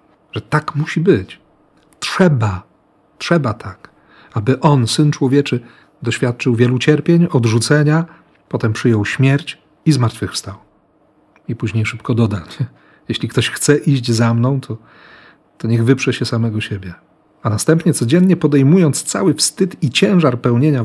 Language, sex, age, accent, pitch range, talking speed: Polish, male, 40-59, native, 110-140 Hz, 130 wpm